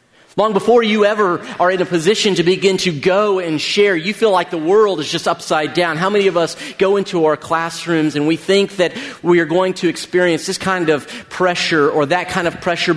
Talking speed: 225 wpm